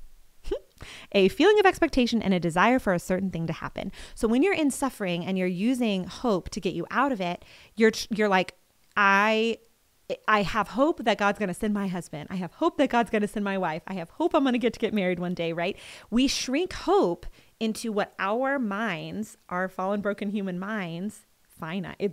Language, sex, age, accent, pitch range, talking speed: English, female, 30-49, American, 180-225 Hz, 210 wpm